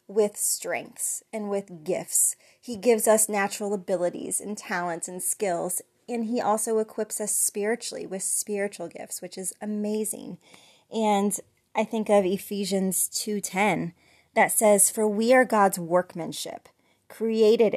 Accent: American